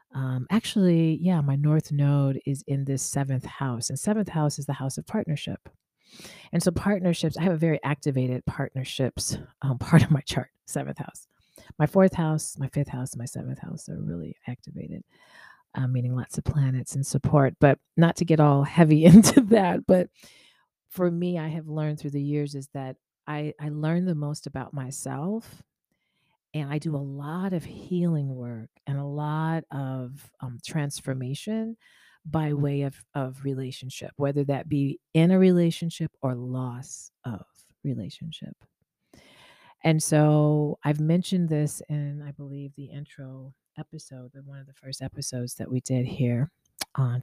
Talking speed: 165 wpm